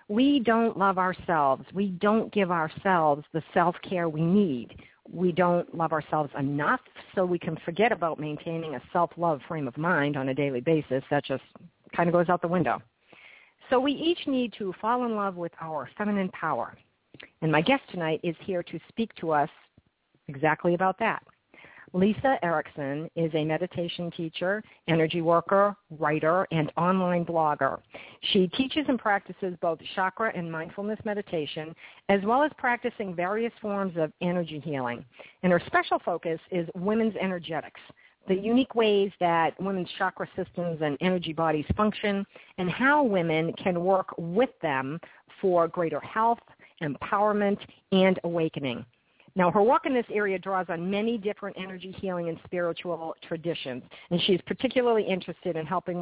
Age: 50-69